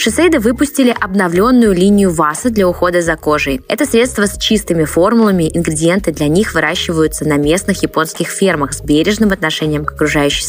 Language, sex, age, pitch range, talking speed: Russian, female, 20-39, 155-205 Hz, 155 wpm